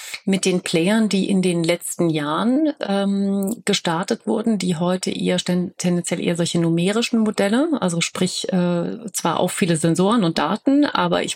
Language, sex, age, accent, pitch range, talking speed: German, female, 40-59, German, 170-200 Hz, 160 wpm